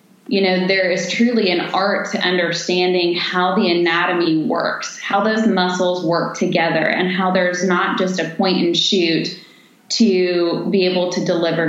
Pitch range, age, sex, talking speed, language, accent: 170-190 Hz, 20-39, female, 165 wpm, English, American